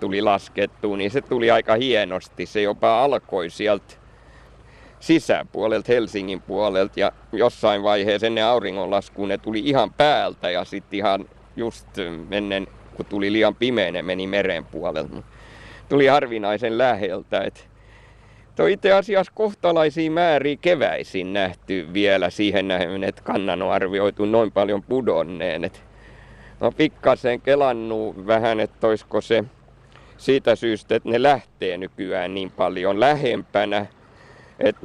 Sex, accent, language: male, native, Finnish